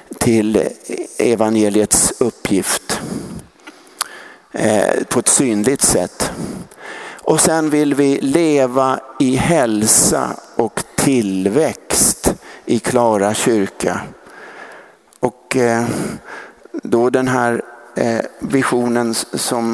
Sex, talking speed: male, 85 wpm